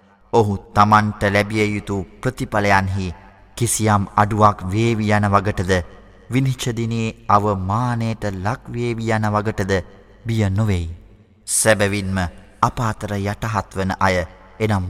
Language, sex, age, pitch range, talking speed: Arabic, male, 20-39, 95-110 Hz, 115 wpm